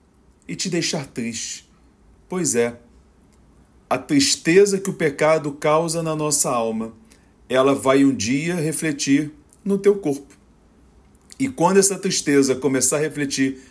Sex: male